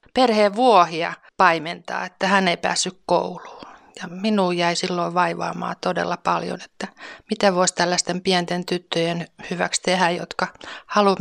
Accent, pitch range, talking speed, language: native, 180-200 Hz, 135 wpm, Finnish